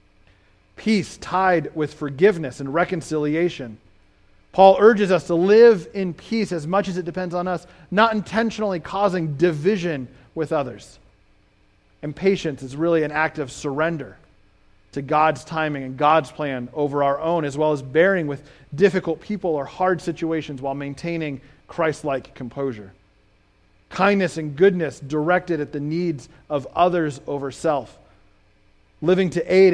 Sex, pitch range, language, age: male, 125-170 Hz, English, 40-59